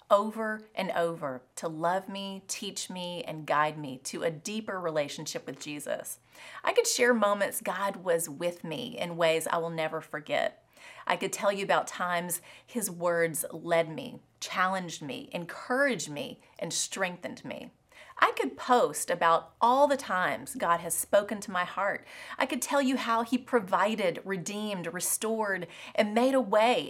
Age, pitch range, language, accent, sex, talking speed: 30-49, 165-225 Hz, English, American, female, 165 wpm